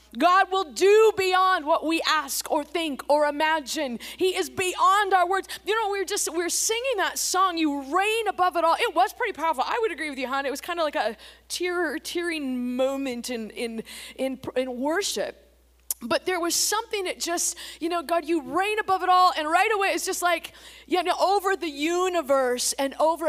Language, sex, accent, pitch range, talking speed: English, female, American, 275-370 Hz, 210 wpm